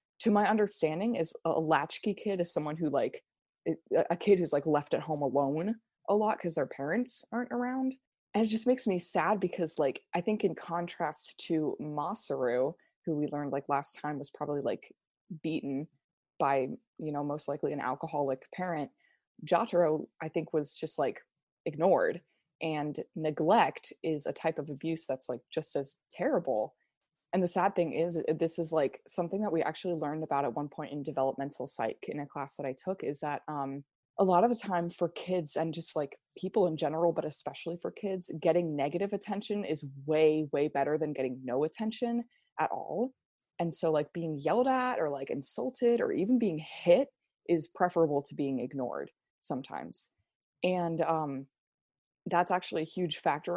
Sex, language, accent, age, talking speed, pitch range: female, English, American, 20-39, 180 wpm, 145-185 Hz